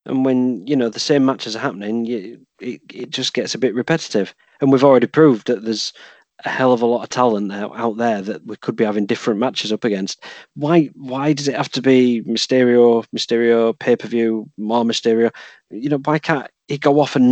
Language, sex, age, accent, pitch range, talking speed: English, male, 40-59, British, 115-140 Hz, 215 wpm